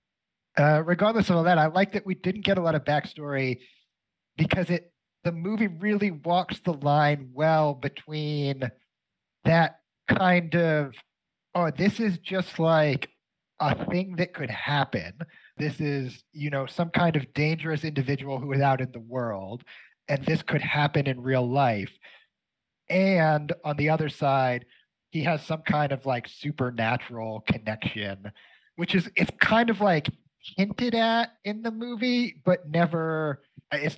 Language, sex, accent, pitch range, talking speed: English, male, American, 130-170 Hz, 155 wpm